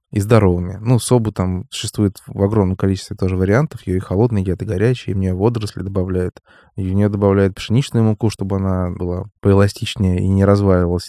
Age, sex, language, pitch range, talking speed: 20-39, male, Russian, 100-120 Hz, 185 wpm